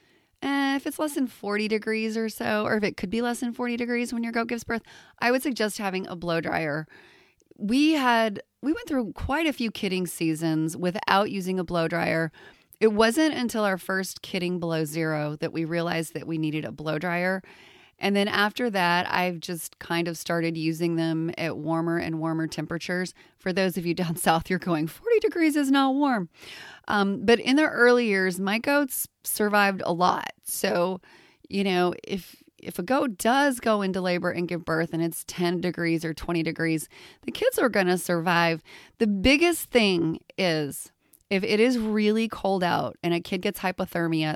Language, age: English, 30-49